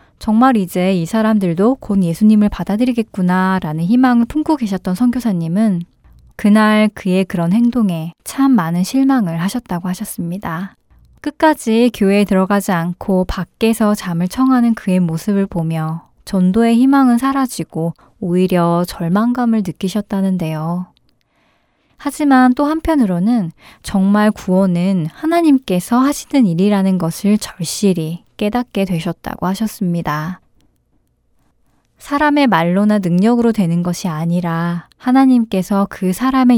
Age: 20-39